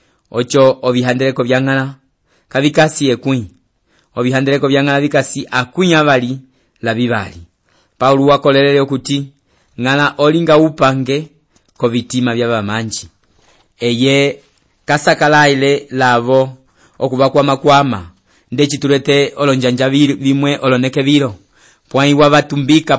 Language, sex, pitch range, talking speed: English, male, 125-145 Hz, 100 wpm